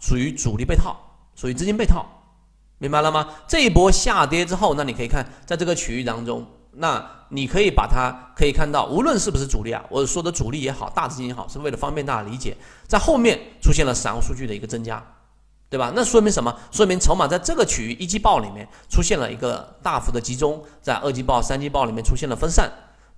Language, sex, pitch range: Chinese, male, 115-155 Hz